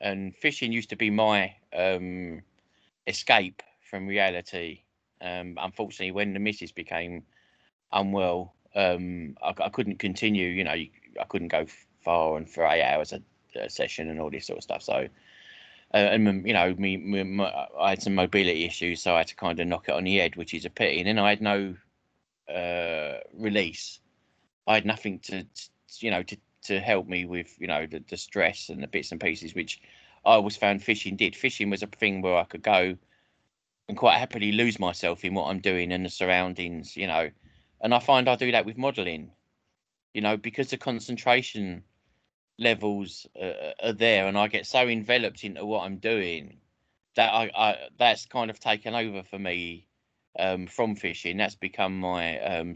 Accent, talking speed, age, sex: British, 195 wpm, 20-39, male